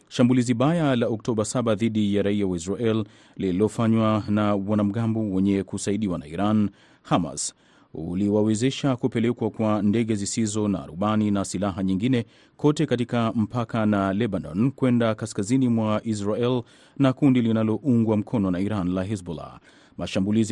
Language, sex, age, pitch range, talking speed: Swahili, male, 30-49, 100-120 Hz, 135 wpm